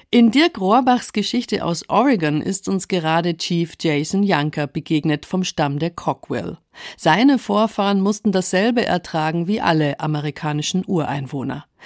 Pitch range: 160-210 Hz